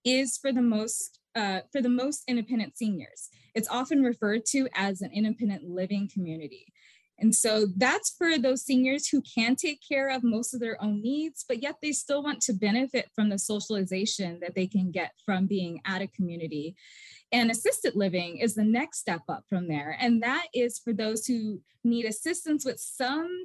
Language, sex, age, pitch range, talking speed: English, female, 20-39, 200-255 Hz, 190 wpm